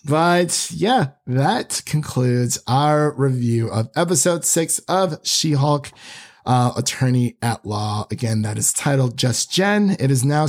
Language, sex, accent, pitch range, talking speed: English, male, American, 125-165 Hz, 135 wpm